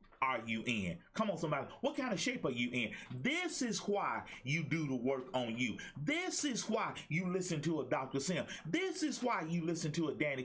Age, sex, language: 30-49, male, English